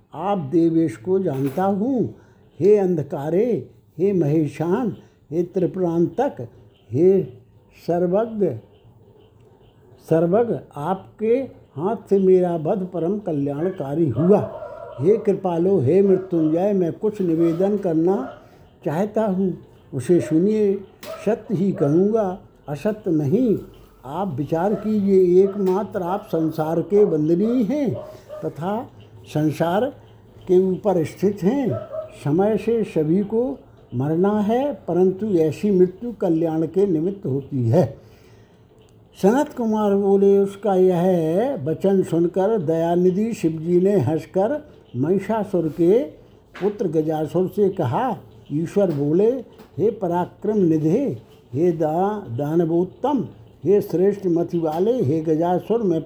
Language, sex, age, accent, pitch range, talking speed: Hindi, male, 60-79, native, 155-200 Hz, 105 wpm